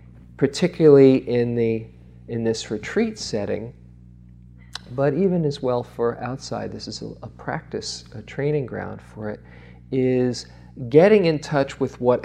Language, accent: English, American